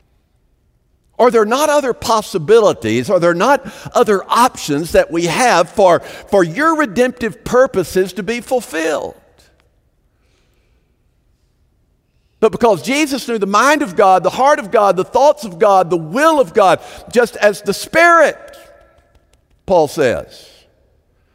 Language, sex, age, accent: English, male, 50-69, American